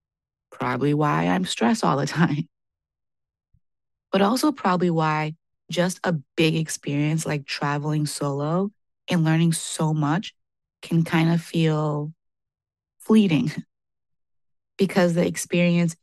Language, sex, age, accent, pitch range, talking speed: English, female, 20-39, American, 150-190 Hz, 110 wpm